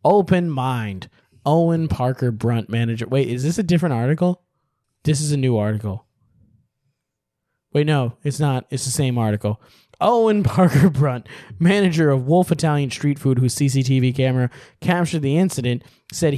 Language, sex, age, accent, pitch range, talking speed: English, male, 20-39, American, 115-155 Hz, 150 wpm